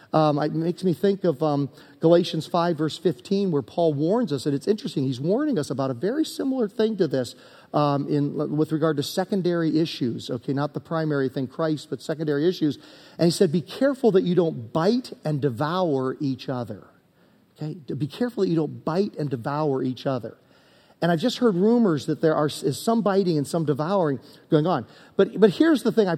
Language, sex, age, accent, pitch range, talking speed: English, male, 40-59, American, 140-195 Hz, 205 wpm